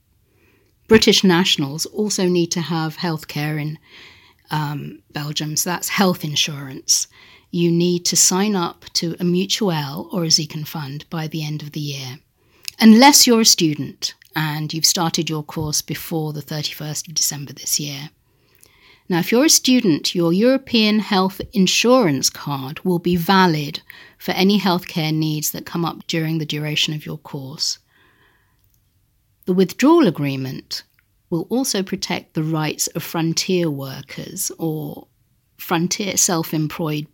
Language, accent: Dutch, British